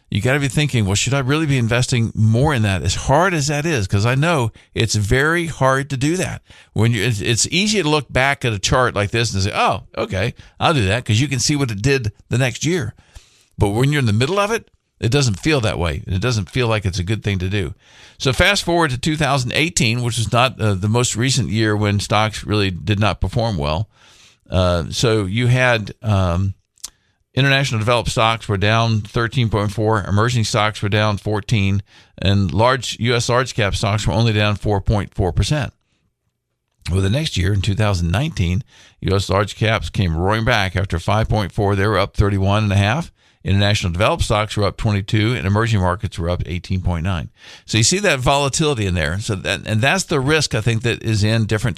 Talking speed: 210 wpm